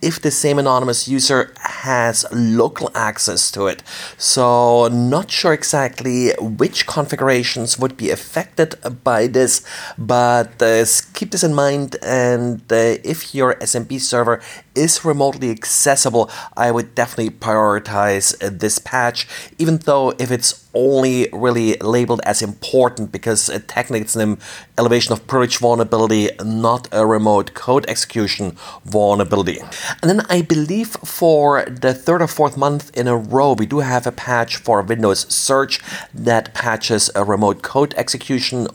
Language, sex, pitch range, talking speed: English, male, 110-135 Hz, 145 wpm